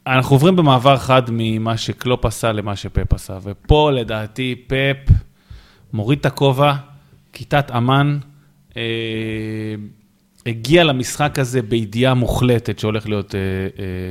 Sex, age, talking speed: male, 20-39, 120 wpm